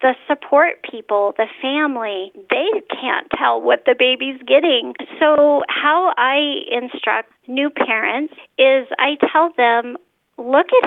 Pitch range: 235-310 Hz